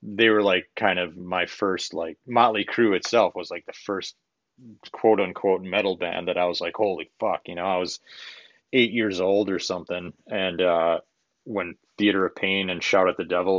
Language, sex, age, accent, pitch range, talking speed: English, male, 30-49, American, 90-110 Hz, 200 wpm